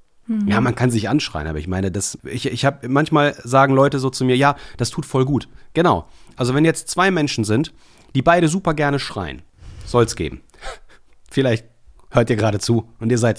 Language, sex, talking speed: German, male, 190 wpm